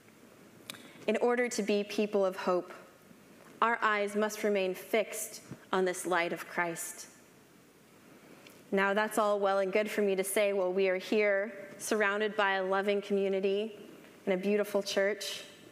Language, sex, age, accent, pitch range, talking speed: English, female, 20-39, American, 185-215 Hz, 155 wpm